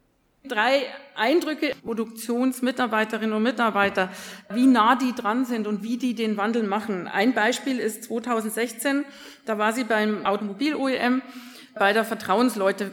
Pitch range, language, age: 210-260 Hz, German, 40-59